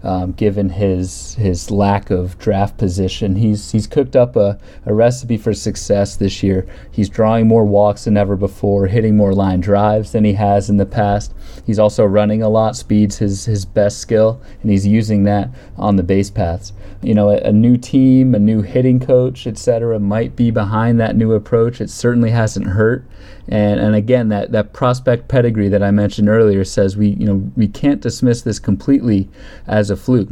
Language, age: English, 30-49